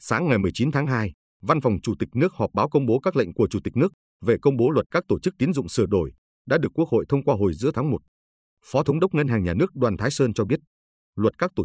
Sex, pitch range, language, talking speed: male, 95-145 Hz, Vietnamese, 290 wpm